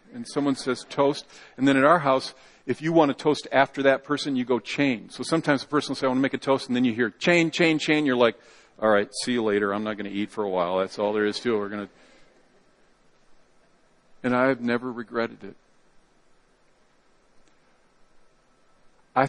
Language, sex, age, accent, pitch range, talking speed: English, male, 50-69, American, 125-150 Hz, 220 wpm